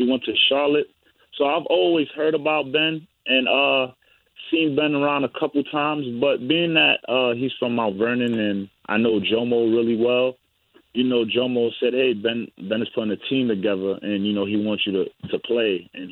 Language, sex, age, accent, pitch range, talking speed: English, male, 20-39, American, 110-130 Hz, 200 wpm